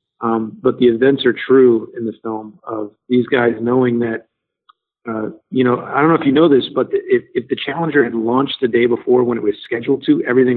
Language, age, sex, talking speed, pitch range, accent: English, 40-59, male, 225 wpm, 115-130 Hz, American